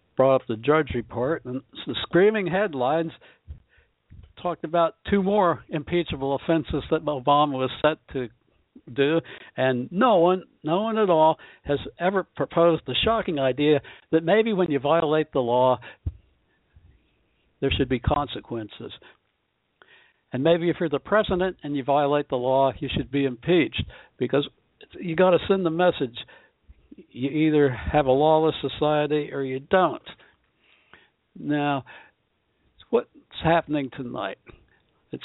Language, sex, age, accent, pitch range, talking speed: English, male, 60-79, American, 130-165 Hz, 140 wpm